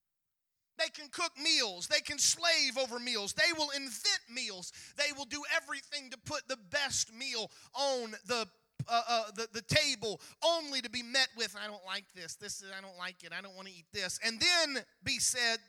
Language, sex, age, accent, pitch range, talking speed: English, male, 40-59, American, 185-265 Hz, 205 wpm